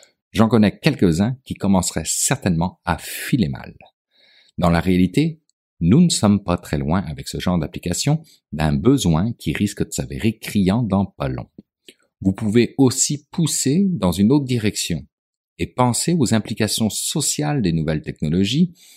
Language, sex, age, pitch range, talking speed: French, male, 50-69, 80-110 Hz, 150 wpm